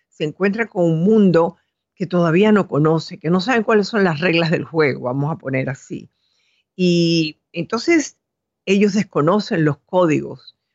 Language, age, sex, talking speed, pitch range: Spanish, 50-69, female, 155 wpm, 155-205 Hz